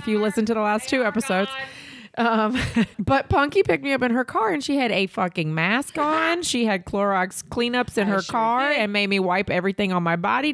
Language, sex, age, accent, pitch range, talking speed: English, female, 30-49, American, 185-265 Hz, 220 wpm